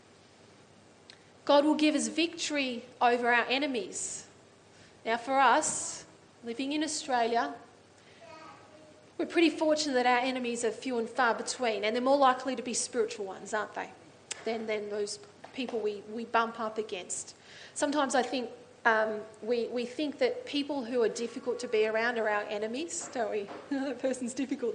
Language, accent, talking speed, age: English, Australian, 160 wpm, 30-49